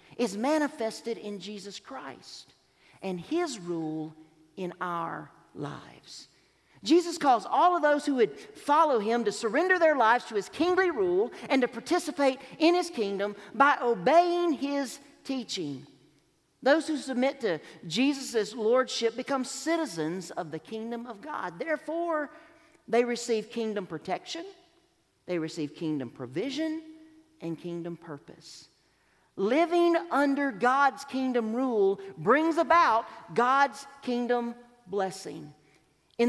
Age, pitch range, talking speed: 50-69, 200-310 Hz, 120 wpm